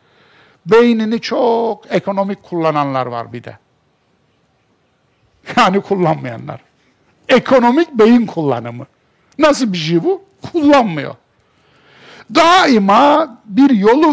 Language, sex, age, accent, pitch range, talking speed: Turkish, male, 60-79, native, 165-245 Hz, 85 wpm